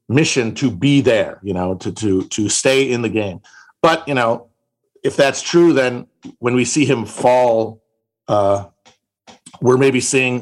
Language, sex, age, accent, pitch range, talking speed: English, male, 50-69, American, 110-140 Hz, 165 wpm